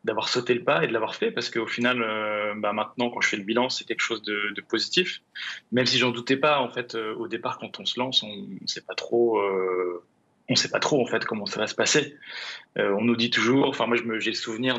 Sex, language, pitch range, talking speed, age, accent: male, French, 110-125 Hz, 270 wpm, 20-39, French